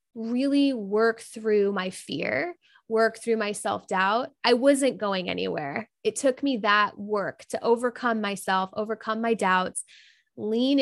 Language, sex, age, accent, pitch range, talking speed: English, female, 20-39, American, 210-255 Hz, 140 wpm